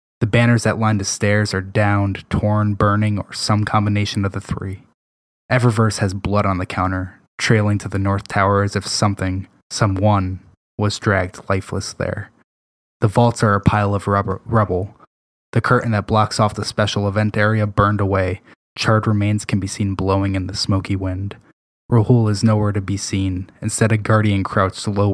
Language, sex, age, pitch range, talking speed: English, male, 10-29, 100-110 Hz, 175 wpm